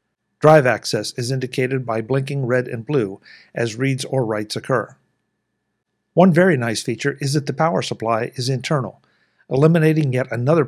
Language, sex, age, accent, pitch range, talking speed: English, male, 50-69, American, 120-150 Hz, 155 wpm